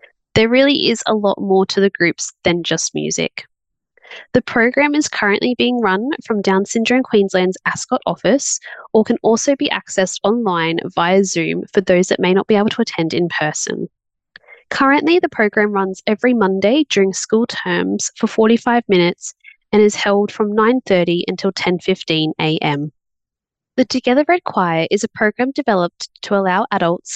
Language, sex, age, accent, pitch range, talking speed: English, female, 20-39, Australian, 180-240 Hz, 165 wpm